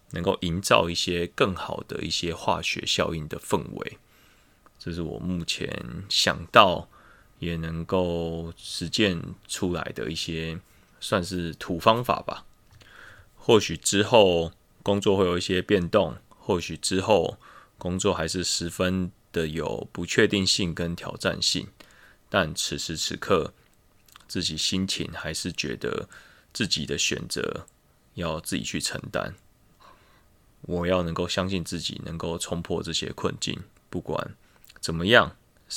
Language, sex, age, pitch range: Chinese, male, 20-39, 85-95 Hz